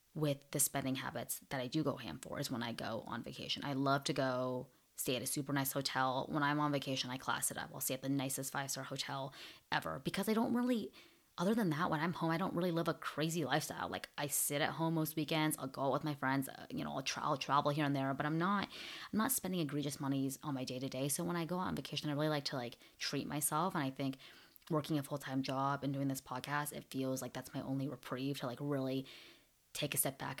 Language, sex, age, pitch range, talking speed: English, female, 20-39, 135-160 Hz, 255 wpm